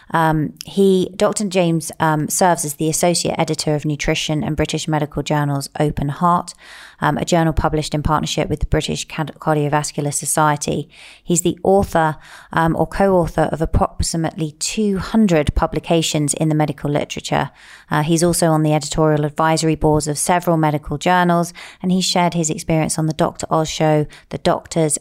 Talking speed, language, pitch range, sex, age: 165 wpm, English, 150-175 Hz, female, 30-49